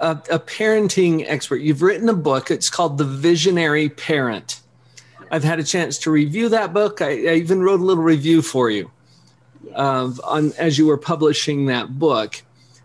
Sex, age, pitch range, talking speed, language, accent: male, 40-59, 130-165 Hz, 180 wpm, English, American